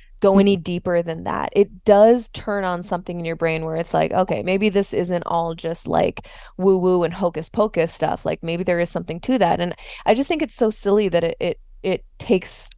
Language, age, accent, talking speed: English, 20-39, American, 225 wpm